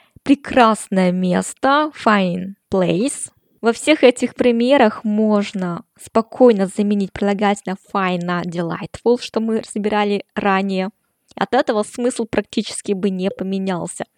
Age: 20-39